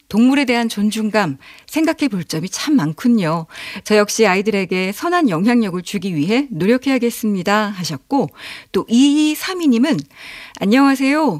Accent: native